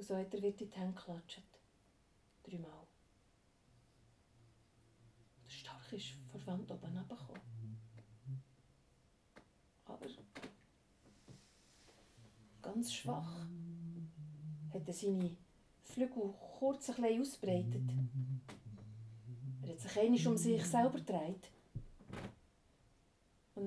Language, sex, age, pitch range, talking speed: German, female, 40-59, 165-225 Hz, 95 wpm